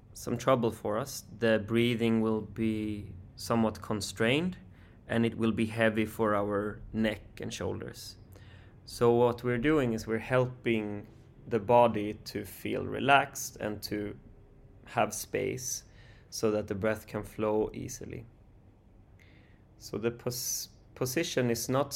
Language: English